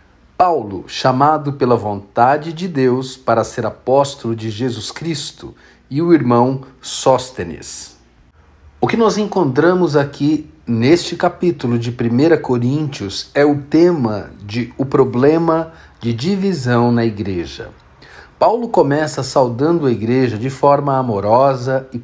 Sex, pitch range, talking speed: male, 115-145 Hz, 125 wpm